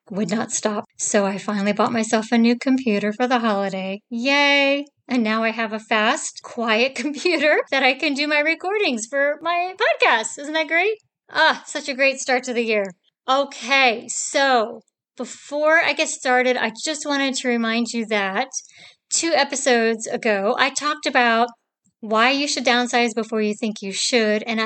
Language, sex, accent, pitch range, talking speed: English, female, American, 220-275 Hz, 175 wpm